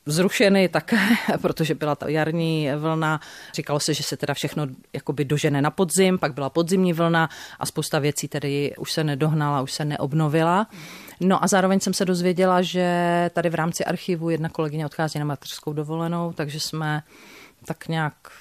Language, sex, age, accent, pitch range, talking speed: Czech, female, 40-59, native, 155-175 Hz, 165 wpm